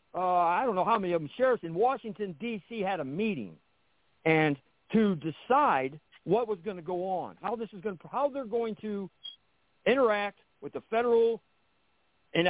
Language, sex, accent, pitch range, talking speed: English, male, American, 170-235 Hz, 185 wpm